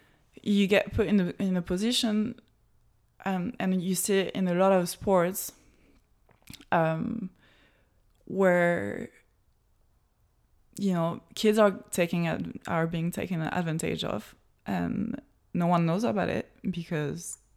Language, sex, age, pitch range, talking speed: English, female, 20-39, 180-210 Hz, 130 wpm